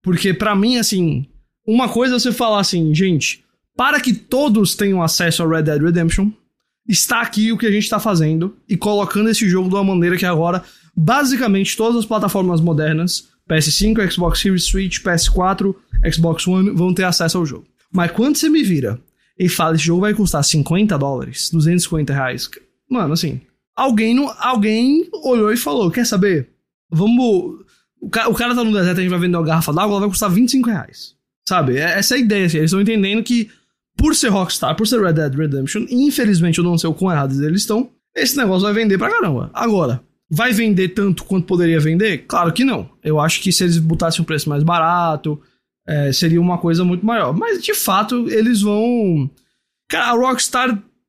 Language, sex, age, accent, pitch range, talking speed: Portuguese, male, 20-39, Brazilian, 165-220 Hz, 190 wpm